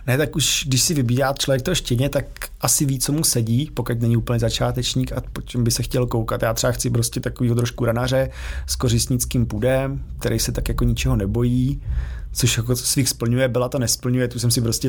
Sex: male